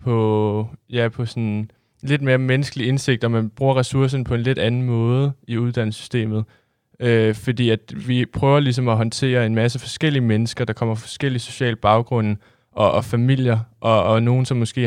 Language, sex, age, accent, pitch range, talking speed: Danish, male, 20-39, native, 115-125 Hz, 180 wpm